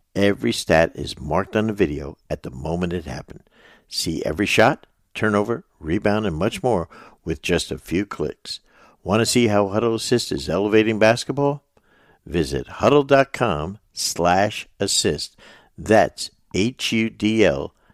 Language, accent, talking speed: English, American, 130 wpm